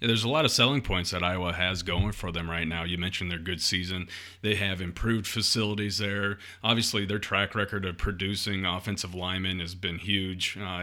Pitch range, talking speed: 90-105 Hz, 200 wpm